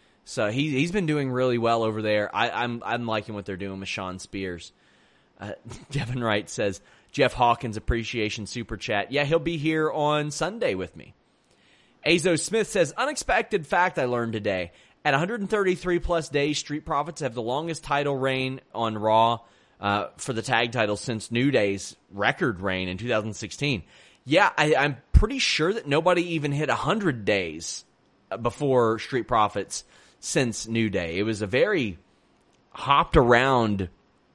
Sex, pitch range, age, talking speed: male, 105-150 Hz, 30-49, 160 wpm